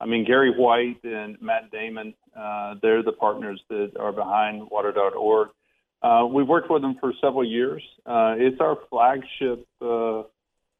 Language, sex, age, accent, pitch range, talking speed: English, male, 40-59, American, 110-135 Hz, 160 wpm